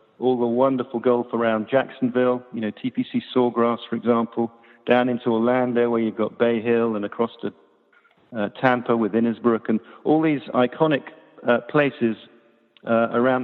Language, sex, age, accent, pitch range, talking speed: English, male, 50-69, British, 115-135 Hz, 155 wpm